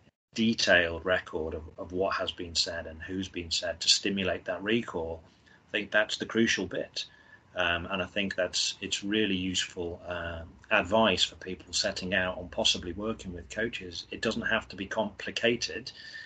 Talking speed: 175 wpm